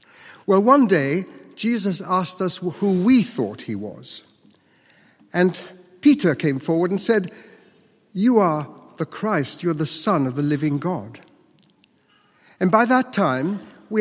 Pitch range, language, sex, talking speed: 135-190 Hz, English, male, 140 wpm